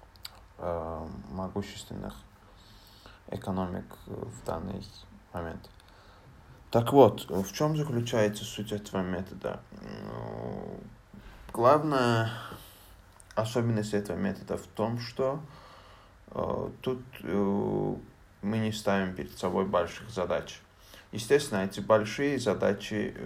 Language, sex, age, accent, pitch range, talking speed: Russian, male, 20-39, native, 95-105 Hz, 85 wpm